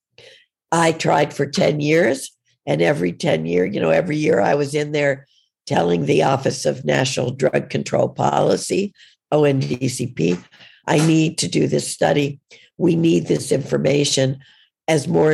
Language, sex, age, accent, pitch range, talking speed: English, female, 60-79, American, 125-155 Hz, 150 wpm